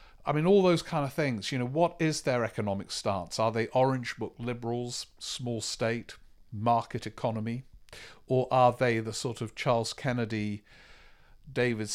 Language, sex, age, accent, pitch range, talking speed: English, male, 50-69, British, 110-135 Hz, 160 wpm